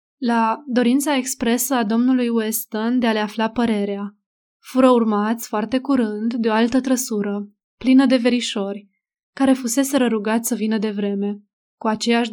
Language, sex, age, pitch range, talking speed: Romanian, female, 20-39, 215-255 Hz, 150 wpm